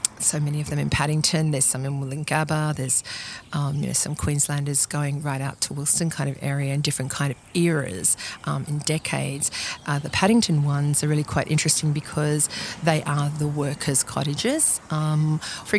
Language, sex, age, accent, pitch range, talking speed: English, female, 40-59, Australian, 145-170 Hz, 185 wpm